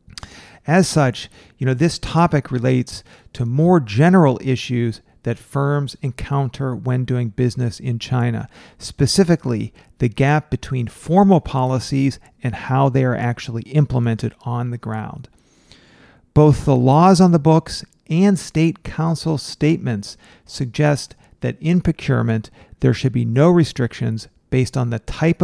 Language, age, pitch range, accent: English, 40-59, 120-150 Hz, American